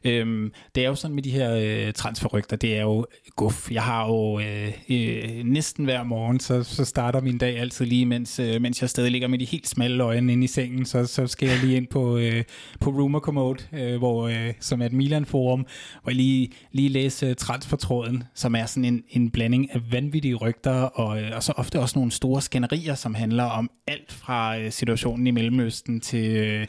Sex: male